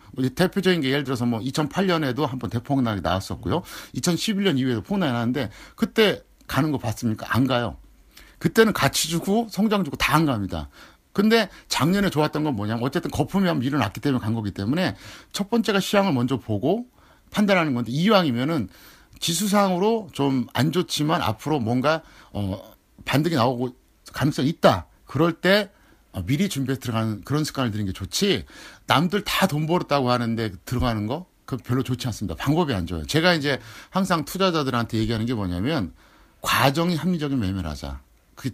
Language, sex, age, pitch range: Korean, male, 50-69, 115-180 Hz